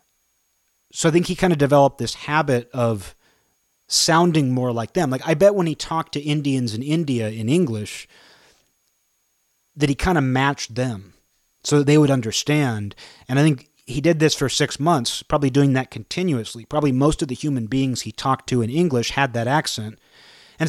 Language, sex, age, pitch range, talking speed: English, male, 30-49, 115-150 Hz, 190 wpm